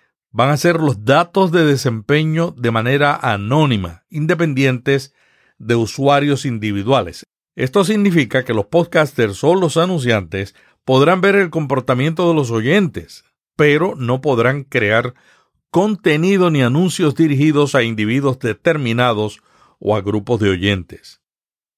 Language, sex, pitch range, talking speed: Spanish, male, 115-160 Hz, 125 wpm